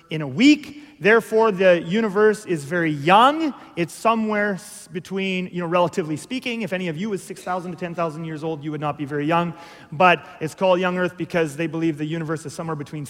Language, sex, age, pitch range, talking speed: English, male, 30-49, 165-215 Hz, 205 wpm